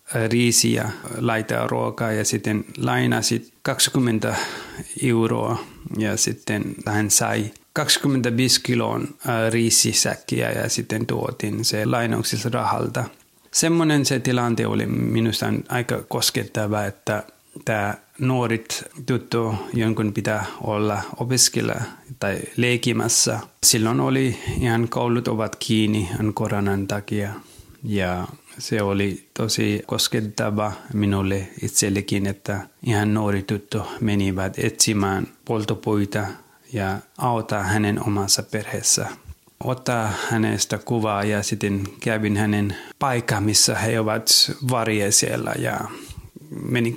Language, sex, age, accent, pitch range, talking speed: Finnish, male, 30-49, native, 105-120 Hz, 100 wpm